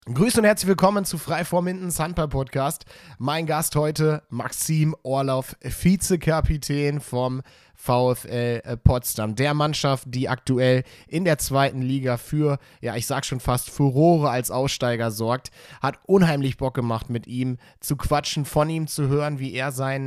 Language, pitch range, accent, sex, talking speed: German, 120-150 Hz, German, male, 150 wpm